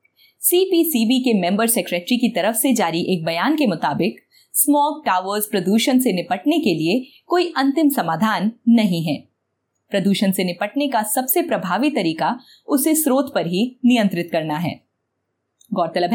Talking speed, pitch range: 145 wpm, 180-260 Hz